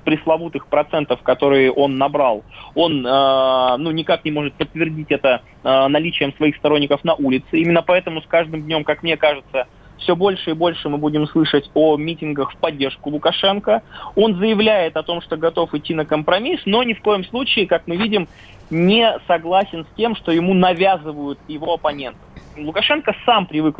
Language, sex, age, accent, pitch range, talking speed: Russian, male, 20-39, native, 145-190 Hz, 170 wpm